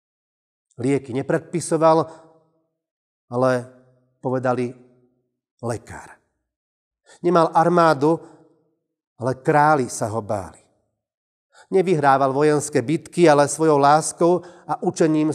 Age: 40-59